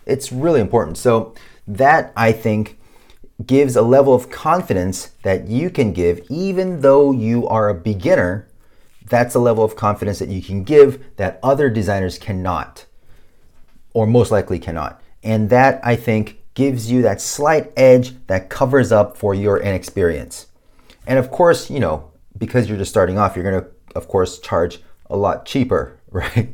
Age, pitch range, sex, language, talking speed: 30-49, 100-135 Hz, male, English, 165 wpm